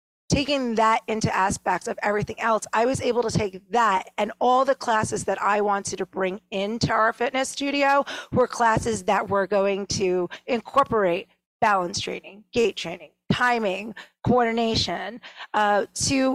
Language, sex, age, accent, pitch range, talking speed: English, female, 30-49, American, 195-235 Hz, 150 wpm